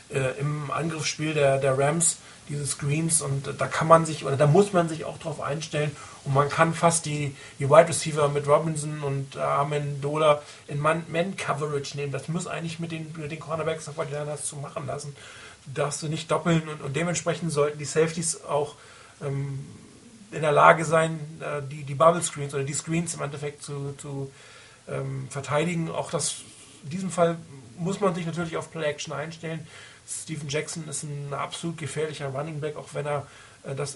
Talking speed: 175 wpm